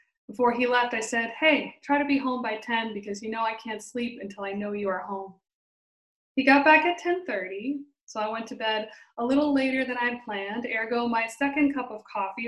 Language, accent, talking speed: English, American, 225 wpm